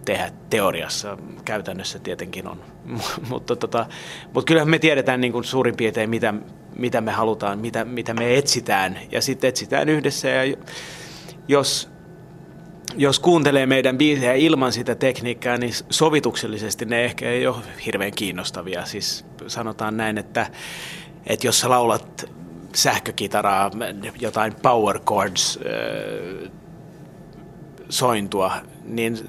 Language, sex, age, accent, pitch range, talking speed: Finnish, male, 30-49, native, 115-160 Hz, 120 wpm